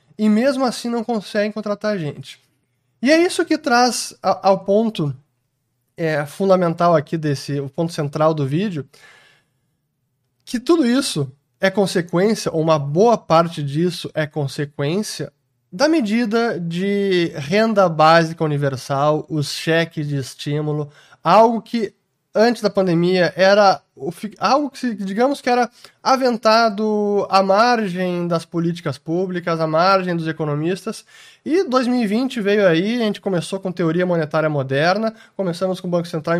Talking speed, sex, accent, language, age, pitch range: 135 wpm, male, Brazilian, English, 20-39, 155-215 Hz